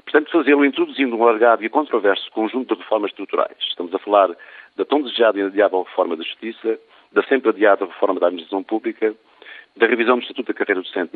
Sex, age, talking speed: male, 50-69, 195 wpm